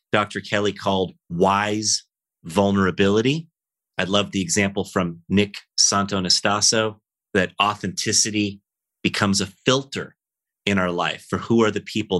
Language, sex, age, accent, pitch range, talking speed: English, male, 30-49, American, 95-110 Hz, 125 wpm